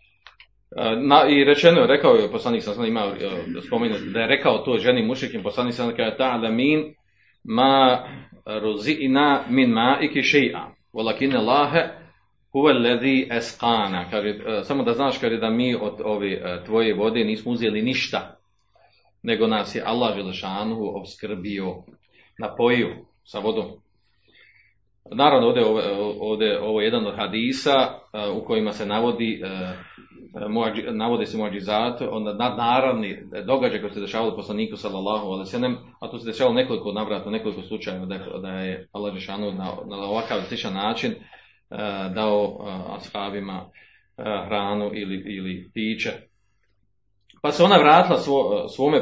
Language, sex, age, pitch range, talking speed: Croatian, male, 40-59, 100-135 Hz, 140 wpm